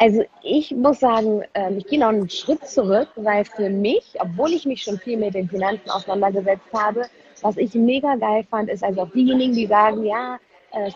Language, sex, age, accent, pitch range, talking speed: German, female, 20-39, German, 200-240 Hz, 195 wpm